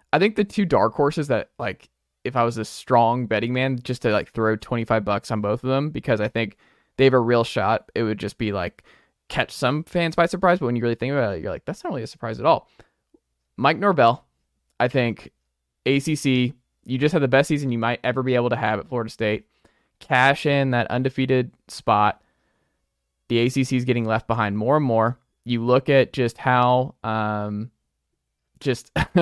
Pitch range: 110-130 Hz